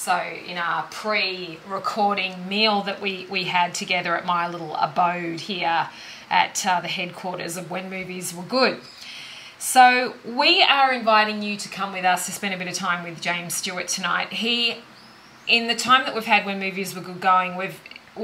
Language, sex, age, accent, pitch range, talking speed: English, female, 20-39, Australian, 180-215 Hz, 185 wpm